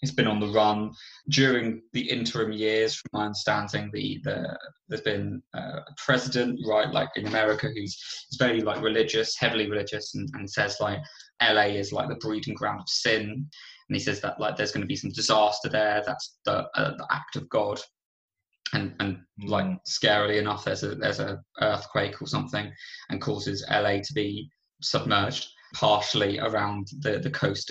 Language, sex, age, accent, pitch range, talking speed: English, male, 20-39, British, 105-135 Hz, 180 wpm